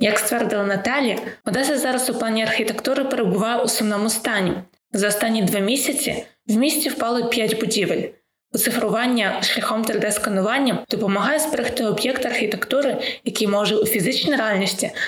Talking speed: 130 wpm